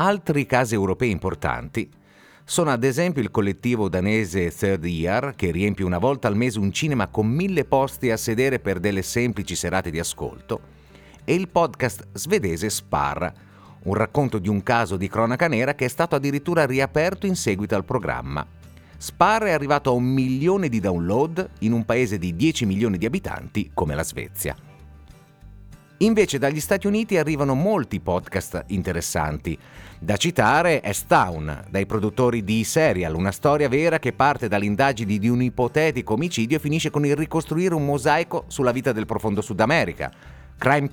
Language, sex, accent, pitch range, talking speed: Italian, male, native, 100-150 Hz, 165 wpm